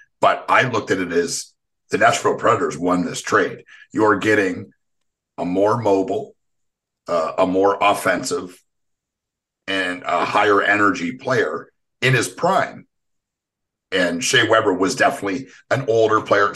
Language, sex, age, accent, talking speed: English, male, 50-69, American, 135 wpm